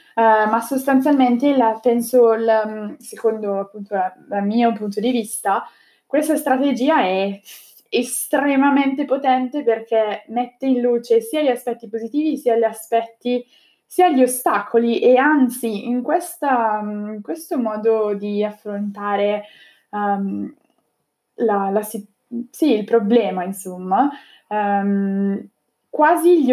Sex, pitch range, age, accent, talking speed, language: female, 200-250 Hz, 20-39, native, 115 wpm, Italian